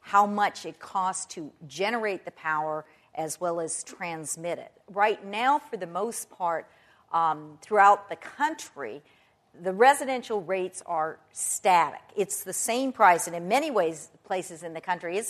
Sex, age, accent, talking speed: female, 50-69, American, 160 wpm